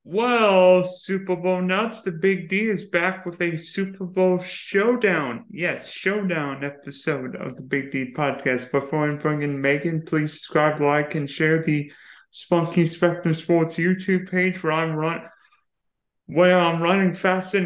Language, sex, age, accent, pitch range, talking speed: English, male, 30-49, American, 150-190 Hz, 145 wpm